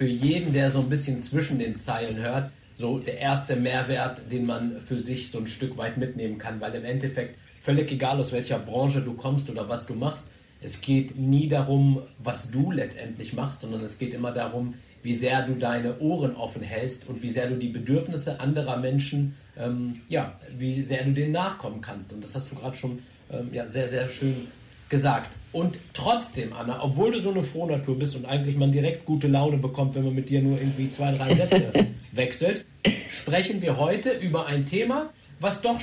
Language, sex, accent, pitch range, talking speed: German, male, German, 125-180 Hz, 200 wpm